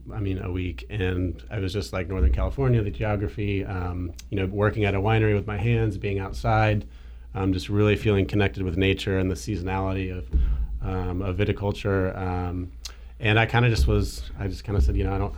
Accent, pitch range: American, 95-105 Hz